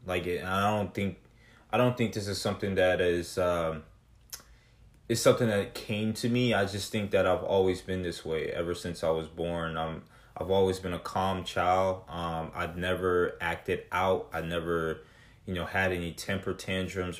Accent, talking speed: American, 195 wpm